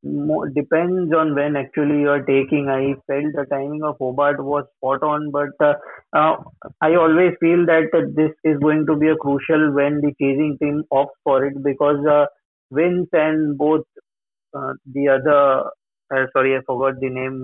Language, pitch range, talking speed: English, 135-155 Hz, 170 wpm